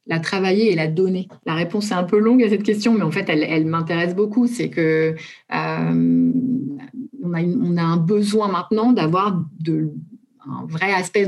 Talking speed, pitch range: 180 wpm, 160-200 Hz